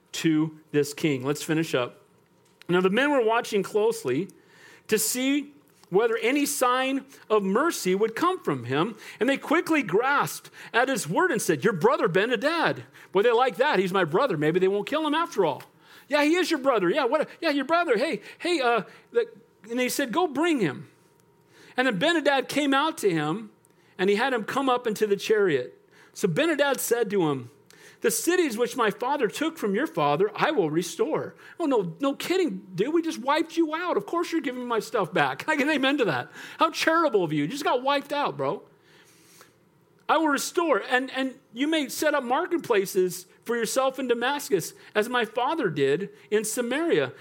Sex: male